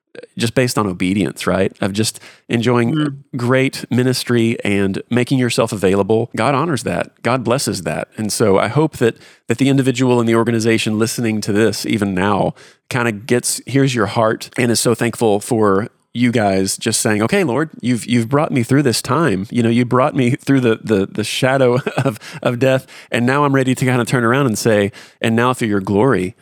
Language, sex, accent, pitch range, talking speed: English, male, American, 100-125 Hz, 200 wpm